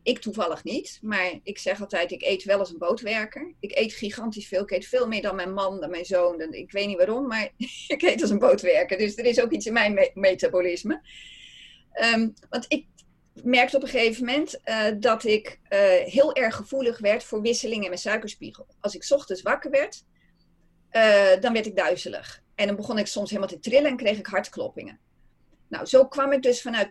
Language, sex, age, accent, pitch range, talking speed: Dutch, female, 30-49, Dutch, 200-265 Hz, 205 wpm